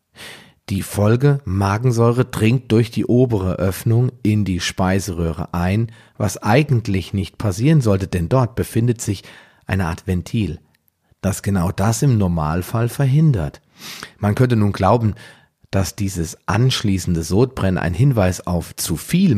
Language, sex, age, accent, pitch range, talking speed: German, male, 40-59, German, 90-115 Hz, 135 wpm